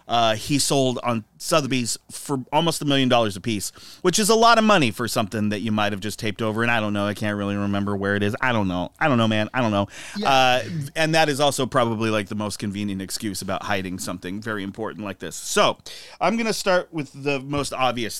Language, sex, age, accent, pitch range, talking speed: English, male, 30-49, American, 110-135 Hz, 245 wpm